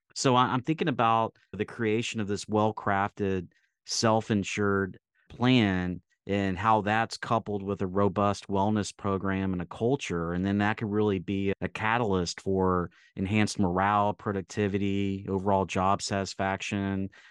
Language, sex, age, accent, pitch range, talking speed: English, male, 30-49, American, 95-110 Hz, 130 wpm